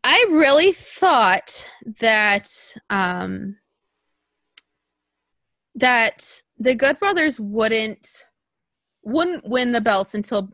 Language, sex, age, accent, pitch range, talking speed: English, female, 20-39, American, 185-275 Hz, 85 wpm